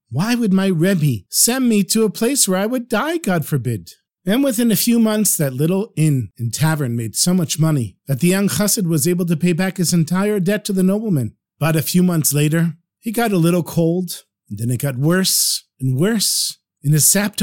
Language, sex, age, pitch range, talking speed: English, male, 50-69, 155-205 Hz, 220 wpm